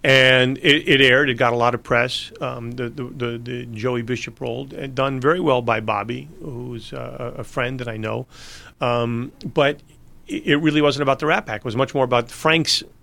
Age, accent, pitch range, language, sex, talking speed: 40-59, American, 105-130 Hz, English, male, 205 wpm